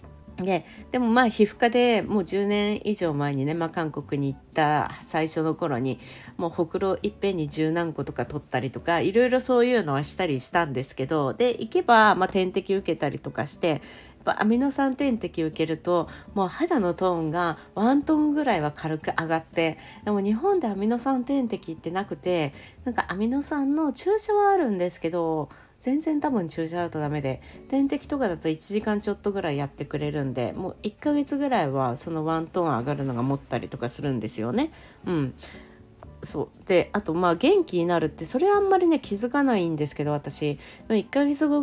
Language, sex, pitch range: Japanese, female, 155-245 Hz